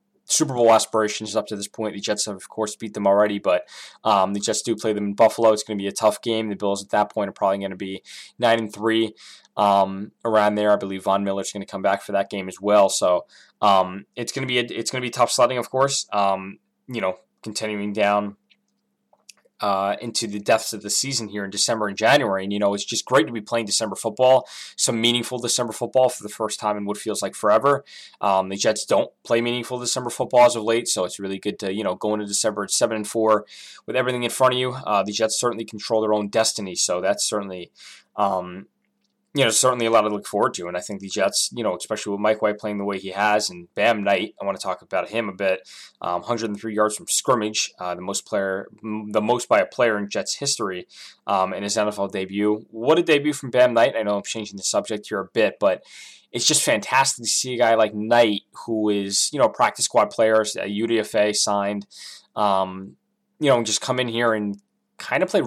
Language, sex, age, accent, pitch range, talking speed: English, male, 20-39, American, 100-120 Hz, 240 wpm